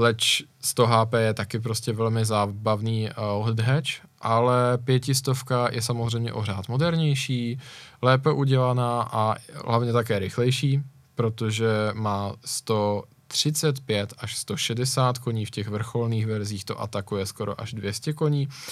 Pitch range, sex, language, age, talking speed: 110-130 Hz, male, Czech, 20-39, 120 wpm